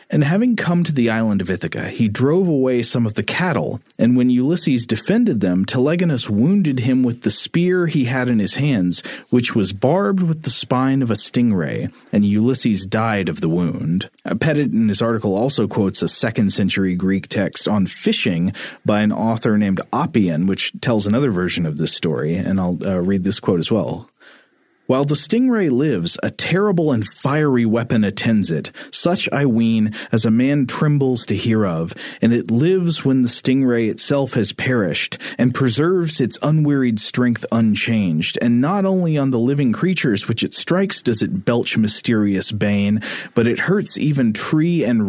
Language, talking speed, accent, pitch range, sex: English, 180 wpm, American, 105-145 Hz, male